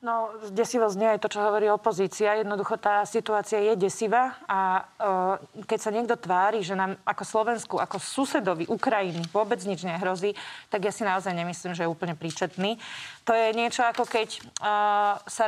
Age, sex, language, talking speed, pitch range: 30-49, female, Slovak, 175 wpm, 200-235 Hz